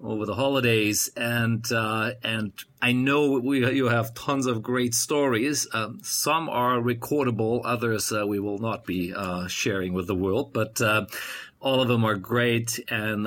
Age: 40-59